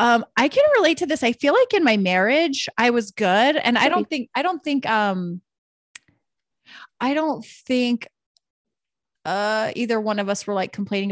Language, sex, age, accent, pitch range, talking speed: English, female, 30-49, American, 180-230 Hz, 185 wpm